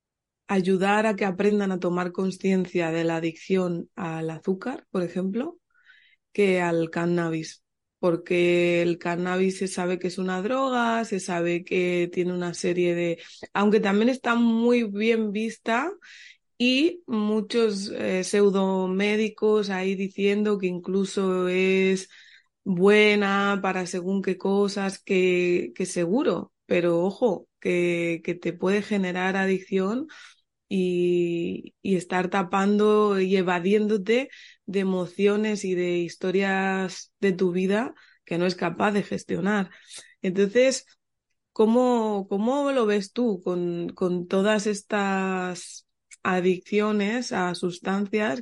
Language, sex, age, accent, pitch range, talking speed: Spanish, female, 20-39, Spanish, 180-210 Hz, 120 wpm